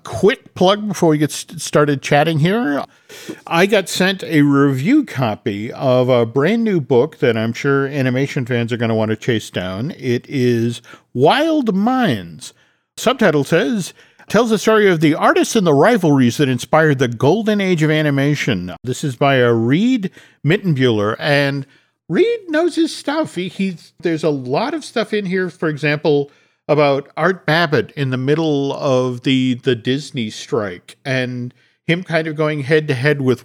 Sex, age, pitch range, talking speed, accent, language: male, 50-69, 125-170 Hz, 170 wpm, American, English